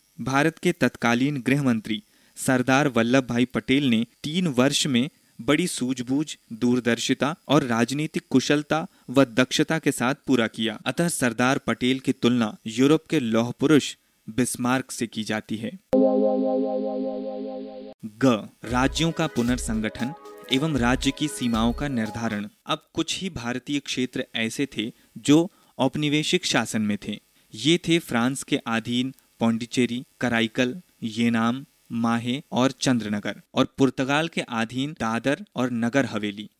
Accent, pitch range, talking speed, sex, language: native, 120-150 Hz, 135 wpm, male, Hindi